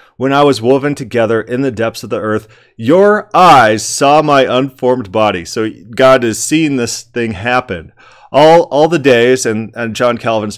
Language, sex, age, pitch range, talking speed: English, male, 30-49, 105-130 Hz, 180 wpm